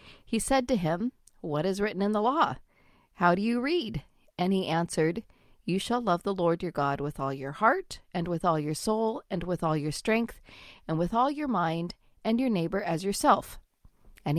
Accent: American